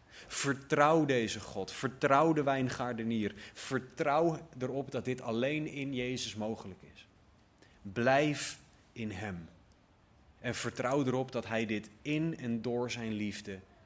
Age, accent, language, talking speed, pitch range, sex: 30-49, Dutch, Dutch, 125 wpm, 110-145 Hz, male